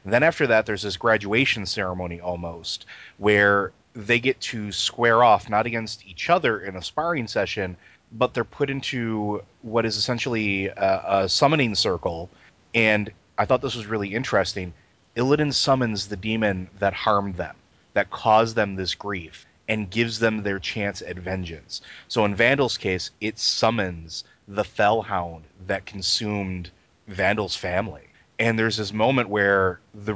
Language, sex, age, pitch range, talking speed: English, male, 30-49, 95-115 Hz, 155 wpm